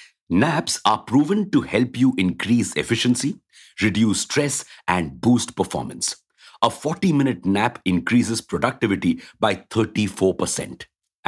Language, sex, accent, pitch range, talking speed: English, male, Indian, 100-140 Hz, 105 wpm